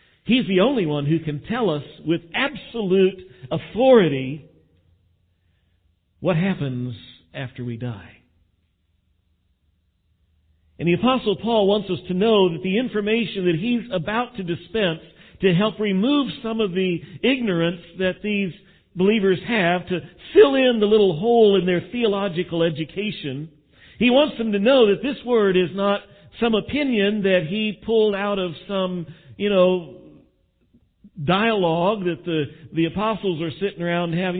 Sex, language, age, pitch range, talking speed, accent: male, English, 50-69, 140-200 Hz, 145 wpm, American